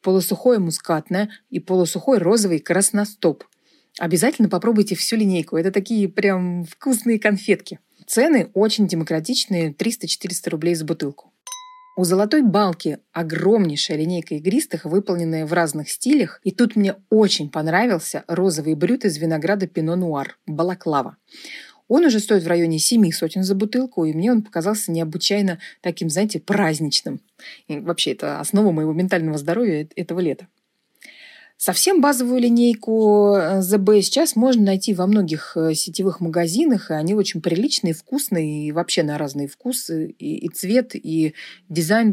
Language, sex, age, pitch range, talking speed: Russian, female, 30-49, 165-220 Hz, 135 wpm